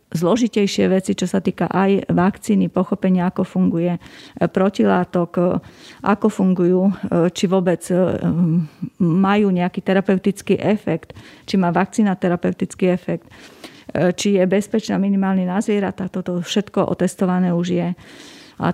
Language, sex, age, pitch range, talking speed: Slovak, female, 30-49, 180-200 Hz, 115 wpm